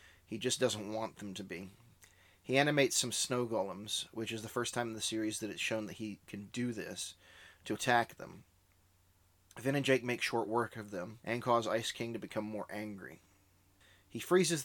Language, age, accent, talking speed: English, 30-49, American, 200 wpm